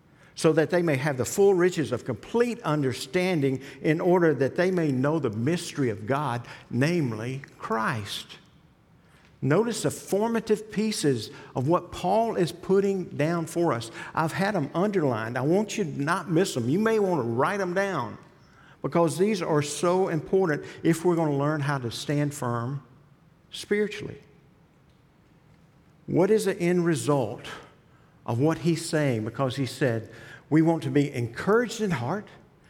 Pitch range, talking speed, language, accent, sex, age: 140-175 Hz, 160 wpm, English, American, male, 50-69